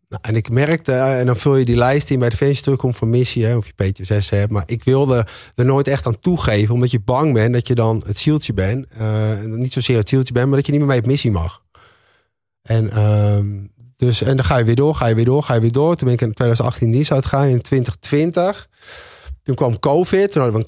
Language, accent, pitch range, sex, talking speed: Dutch, Dutch, 105-130 Hz, male, 255 wpm